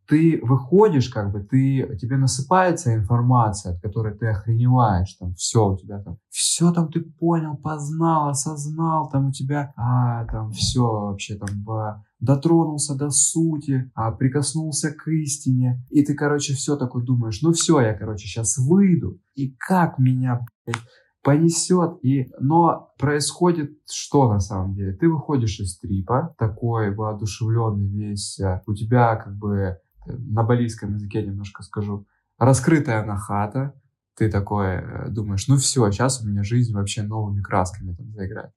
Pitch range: 105-145 Hz